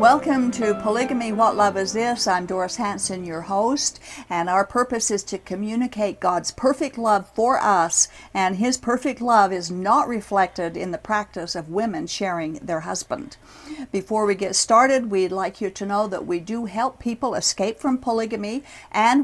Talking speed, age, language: 175 wpm, 60-79, English